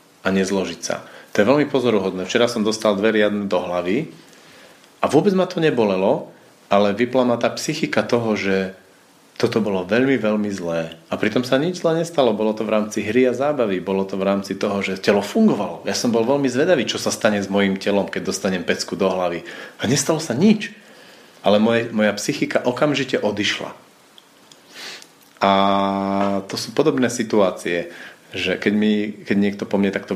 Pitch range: 95-120 Hz